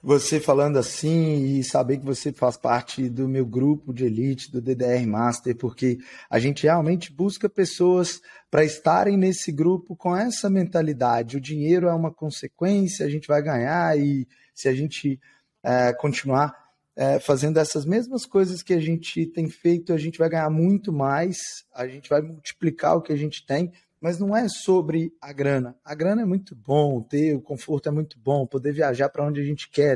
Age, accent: 20-39, Brazilian